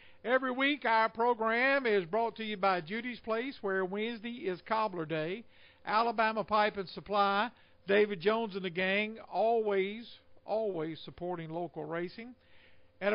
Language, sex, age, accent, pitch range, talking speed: English, male, 50-69, American, 165-225 Hz, 140 wpm